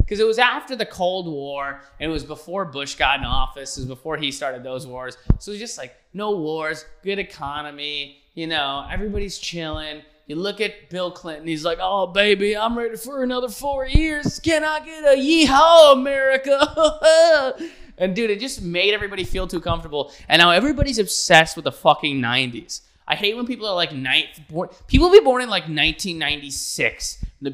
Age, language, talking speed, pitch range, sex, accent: 20-39, English, 185 wpm, 140-220 Hz, male, American